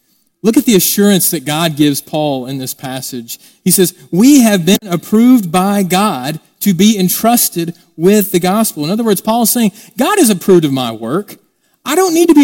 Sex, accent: male, American